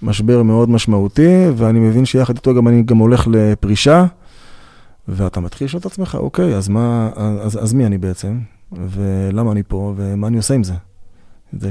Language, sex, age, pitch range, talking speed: Hebrew, male, 20-39, 95-120 Hz, 175 wpm